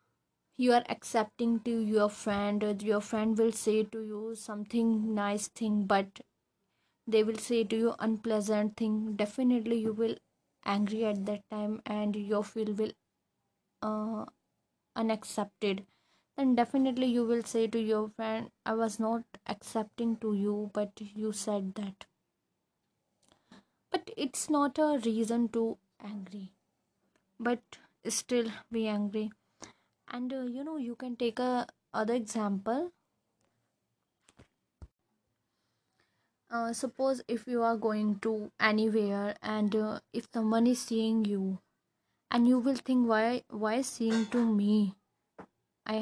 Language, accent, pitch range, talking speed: English, Indian, 210-235 Hz, 130 wpm